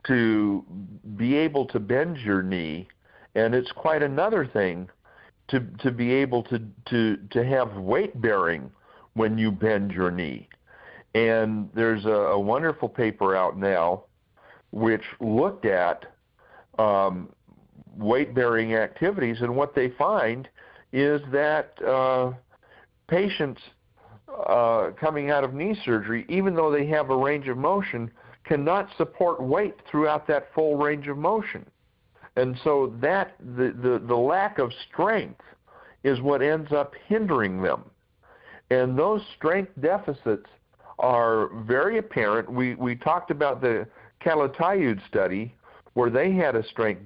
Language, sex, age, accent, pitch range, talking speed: English, male, 50-69, American, 105-145 Hz, 135 wpm